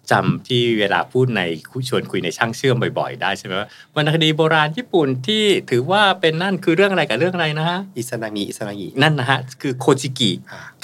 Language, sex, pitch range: Thai, male, 115-155 Hz